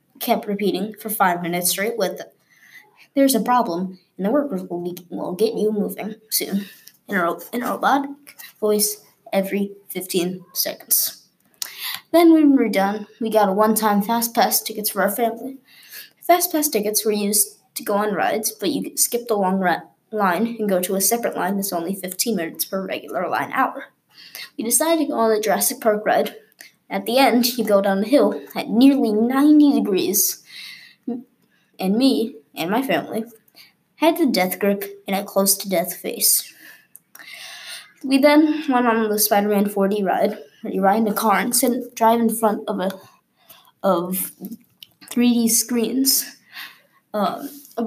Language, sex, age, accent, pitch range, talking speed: English, female, 20-39, American, 195-245 Hz, 170 wpm